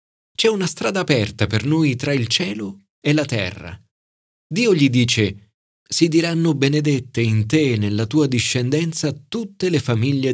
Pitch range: 105-150 Hz